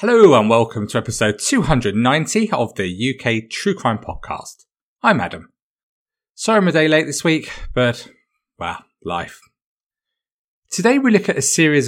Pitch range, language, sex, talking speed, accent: 115-195 Hz, English, male, 150 wpm, British